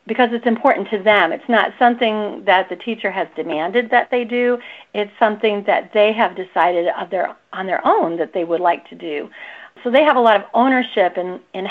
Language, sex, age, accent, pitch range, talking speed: English, female, 40-59, American, 190-235 Hz, 205 wpm